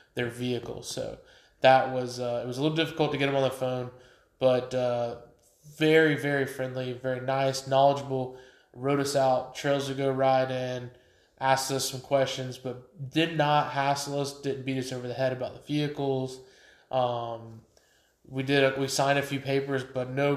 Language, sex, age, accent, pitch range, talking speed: English, male, 20-39, American, 125-140 Hz, 180 wpm